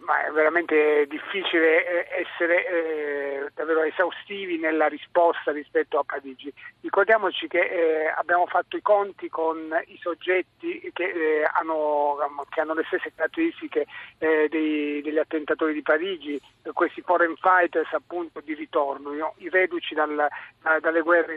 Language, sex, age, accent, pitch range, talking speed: Italian, male, 50-69, native, 155-210 Hz, 110 wpm